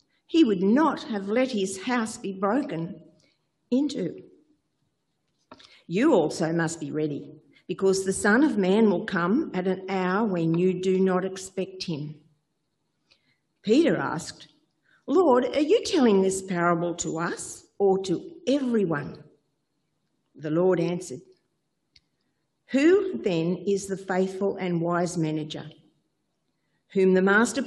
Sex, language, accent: female, English, Australian